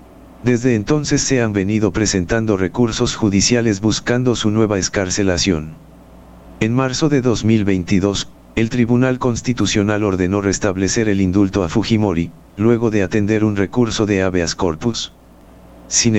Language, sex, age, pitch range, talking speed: Spanish, male, 50-69, 90-115 Hz, 125 wpm